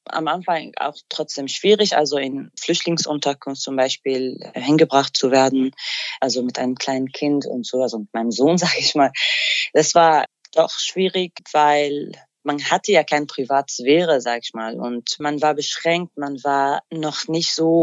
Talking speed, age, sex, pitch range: 165 wpm, 20-39, female, 135-165 Hz